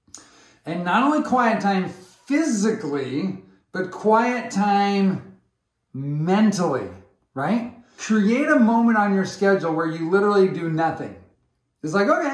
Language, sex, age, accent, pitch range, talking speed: English, male, 40-59, American, 185-235 Hz, 120 wpm